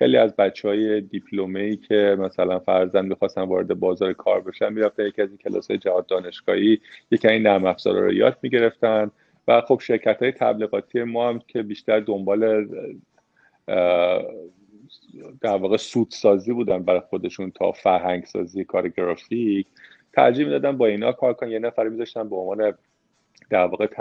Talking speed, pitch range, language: 135 wpm, 100-120 Hz, Persian